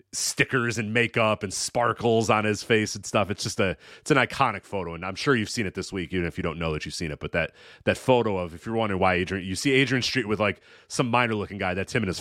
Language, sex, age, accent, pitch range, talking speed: English, male, 30-49, American, 100-135 Hz, 285 wpm